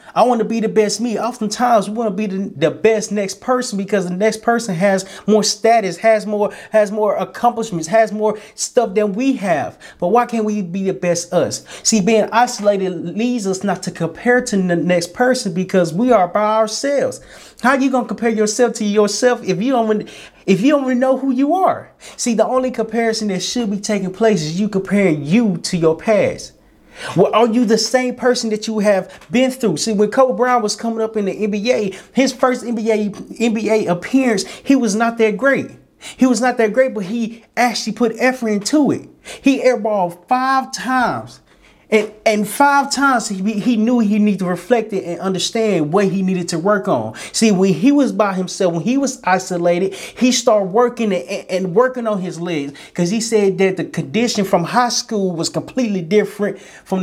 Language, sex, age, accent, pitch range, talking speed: English, male, 30-49, American, 195-245 Hz, 205 wpm